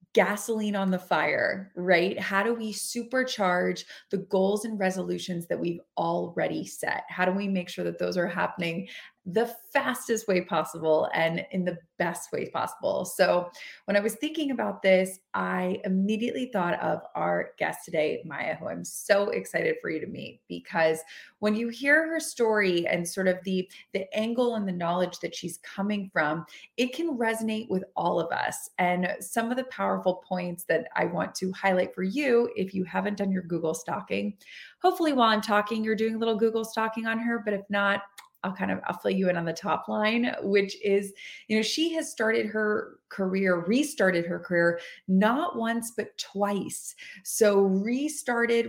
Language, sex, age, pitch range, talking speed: English, female, 20-39, 180-230 Hz, 180 wpm